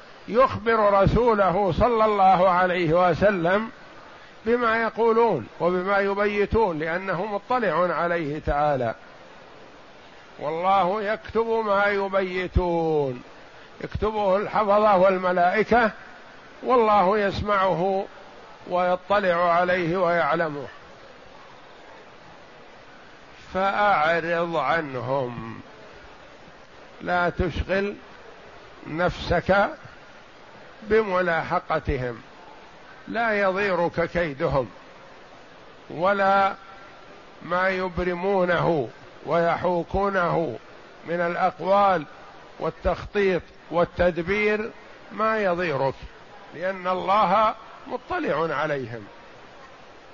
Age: 50-69